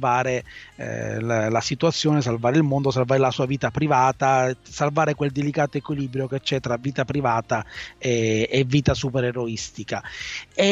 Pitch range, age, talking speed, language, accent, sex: 135-160 Hz, 30-49, 140 wpm, Italian, native, male